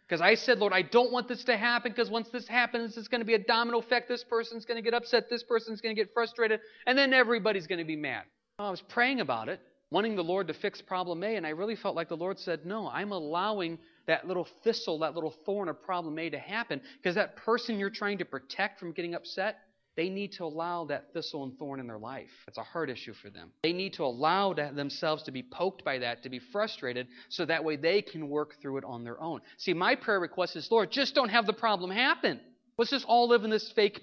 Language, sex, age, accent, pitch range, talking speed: English, male, 40-59, American, 180-250 Hz, 255 wpm